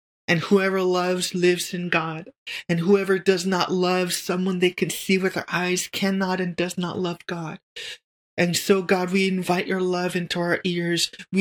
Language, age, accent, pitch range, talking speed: English, 30-49, American, 175-195 Hz, 180 wpm